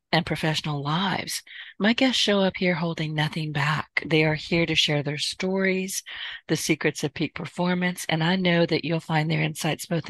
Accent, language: American, English